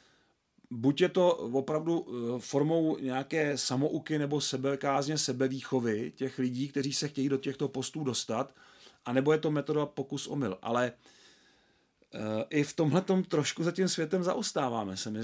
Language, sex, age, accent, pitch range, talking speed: Czech, male, 40-59, native, 125-155 Hz, 140 wpm